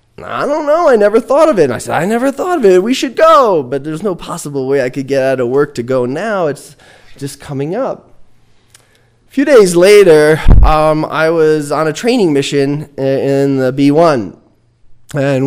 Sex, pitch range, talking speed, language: male, 120-160 Hz, 200 wpm, English